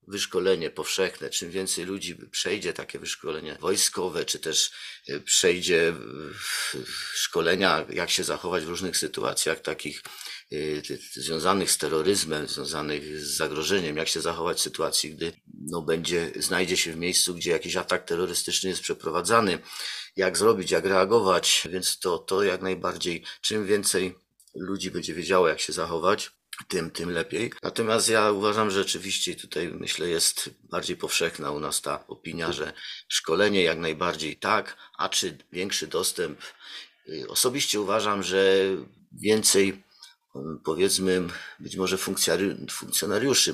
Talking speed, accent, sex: 130 wpm, native, male